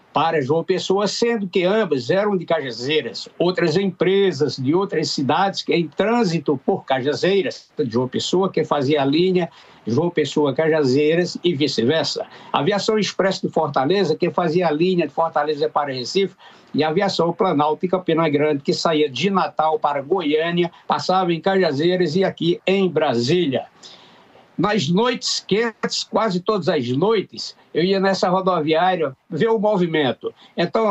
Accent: Brazilian